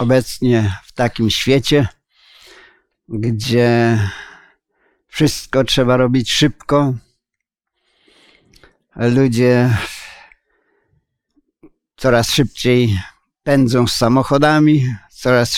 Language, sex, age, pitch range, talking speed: Polish, male, 50-69, 125-145 Hz, 60 wpm